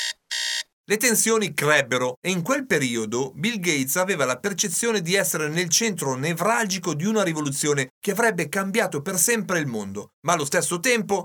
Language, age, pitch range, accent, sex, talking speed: Italian, 40-59, 140-205 Hz, native, male, 165 wpm